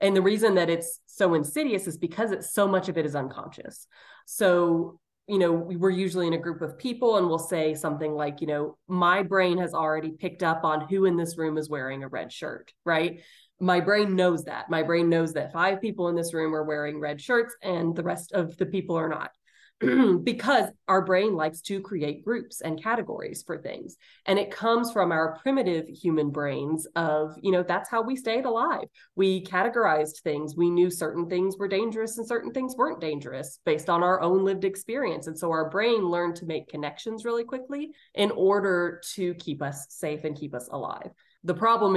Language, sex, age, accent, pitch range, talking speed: English, female, 20-39, American, 155-195 Hz, 205 wpm